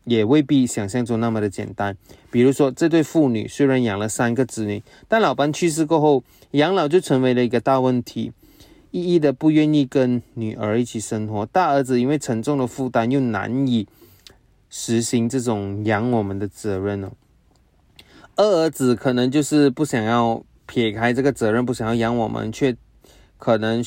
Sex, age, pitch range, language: male, 20-39, 110-135 Hz, Chinese